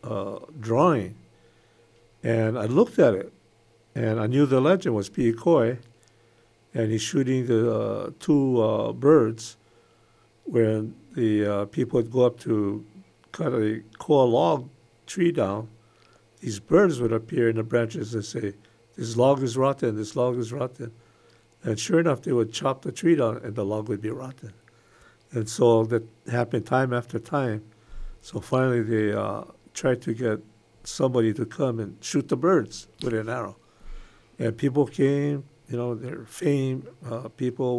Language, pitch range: English, 115-130 Hz